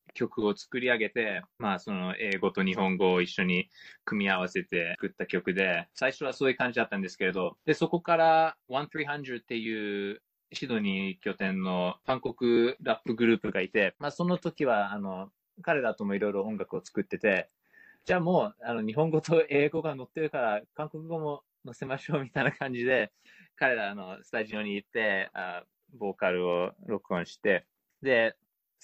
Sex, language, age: male, Japanese, 20-39